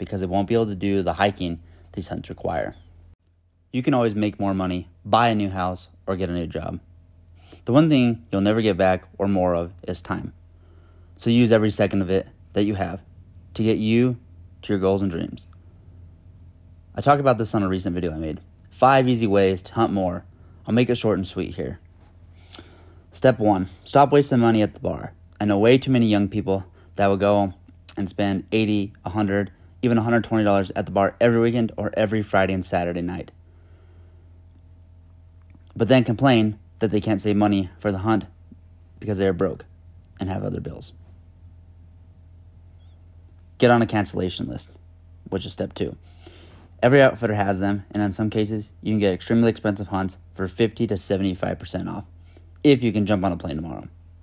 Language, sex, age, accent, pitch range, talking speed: English, male, 30-49, American, 85-105 Hz, 185 wpm